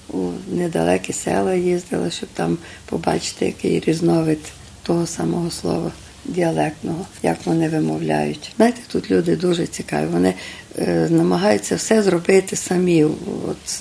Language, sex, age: Ukrainian, female, 50-69